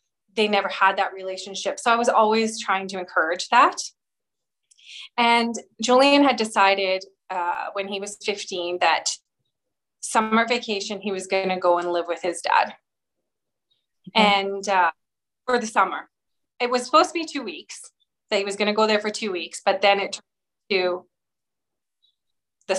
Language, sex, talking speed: English, female, 165 wpm